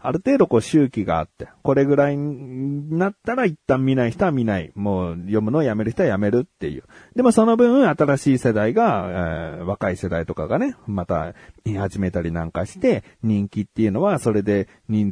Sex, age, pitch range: male, 40-59, 100-150 Hz